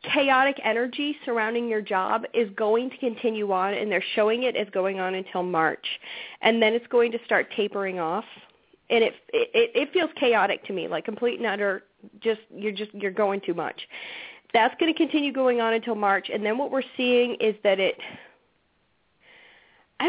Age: 40-59